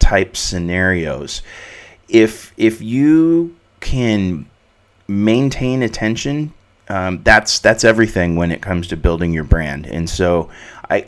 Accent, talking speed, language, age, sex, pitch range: American, 120 wpm, English, 30-49, male, 85-115 Hz